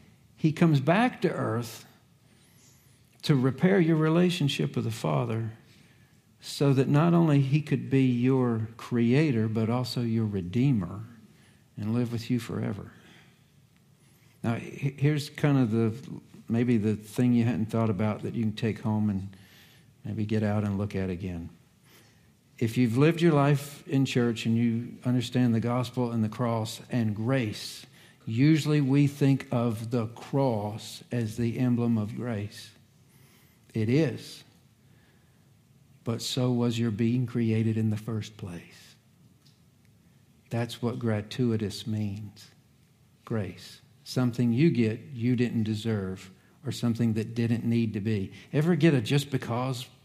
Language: English